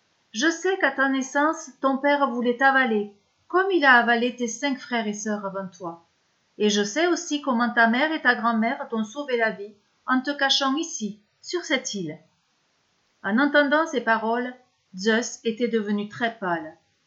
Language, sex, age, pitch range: French, female, 40-59, 205-270 Hz